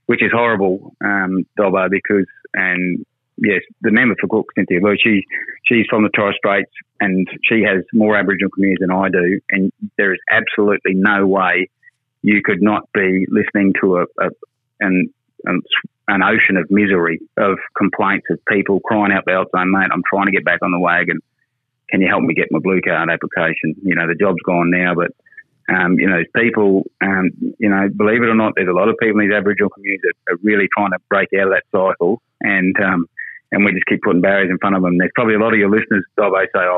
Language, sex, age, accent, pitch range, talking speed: English, male, 30-49, Australian, 95-105 Hz, 215 wpm